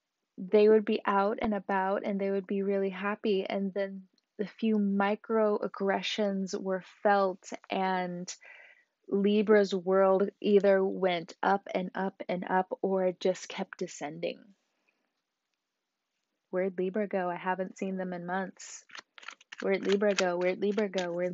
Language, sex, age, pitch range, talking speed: English, female, 20-39, 185-210 Hz, 140 wpm